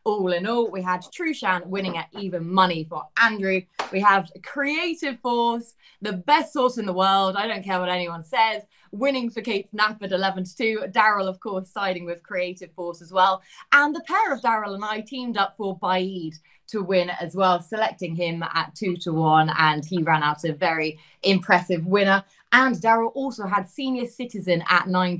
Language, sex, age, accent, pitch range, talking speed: English, female, 20-39, British, 175-220 Hz, 190 wpm